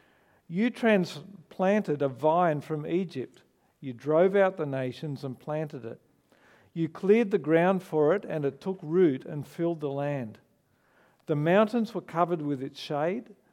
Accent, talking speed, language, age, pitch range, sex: Australian, 155 wpm, English, 50-69, 140-180 Hz, male